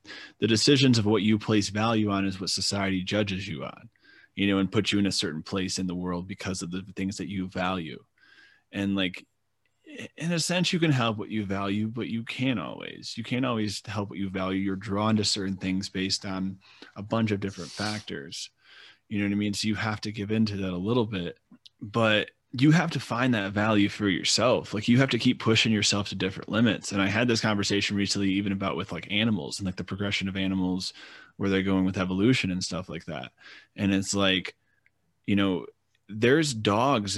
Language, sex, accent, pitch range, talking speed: English, male, American, 95-115 Hz, 215 wpm